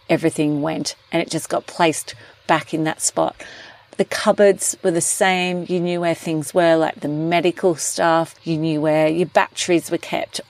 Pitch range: 155-185 Hz